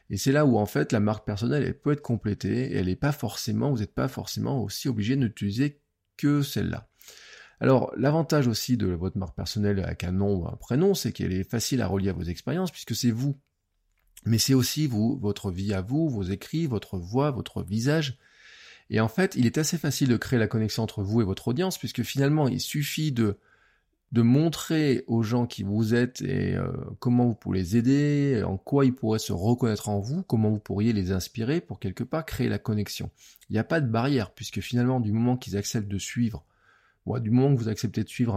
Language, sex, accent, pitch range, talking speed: French, male, French, 100-135 Hz, 220 wpm